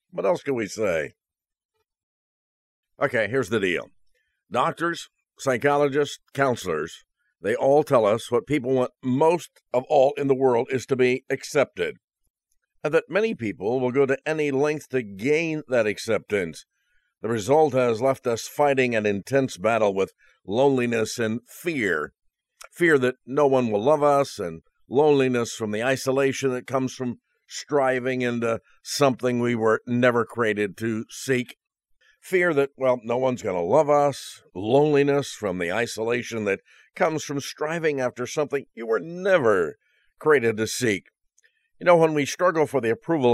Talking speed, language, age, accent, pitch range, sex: 155 wpm, English, 50-69, American, 120-145 Hz, male